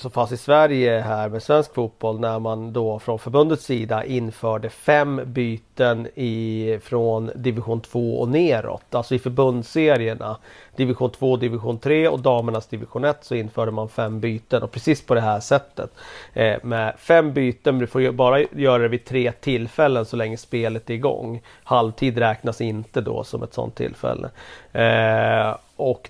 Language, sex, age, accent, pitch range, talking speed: Swedish, male, 40-59, native, 110-125 Hz, 170 wpm